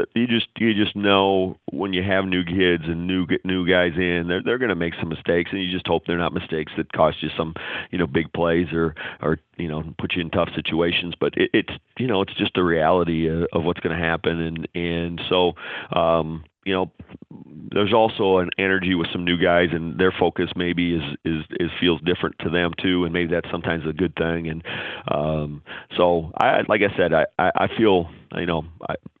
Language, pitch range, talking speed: English, 85-95 Hz, 220 wpm